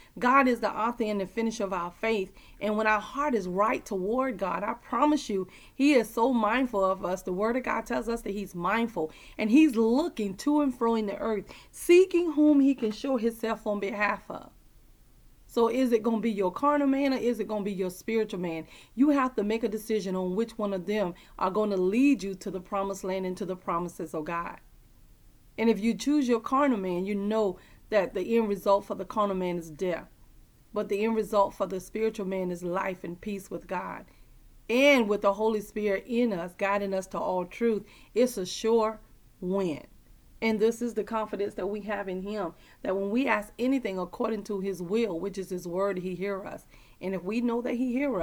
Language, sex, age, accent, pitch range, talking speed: English, female, 30-49, American, 190-230 Hz, 225 wpm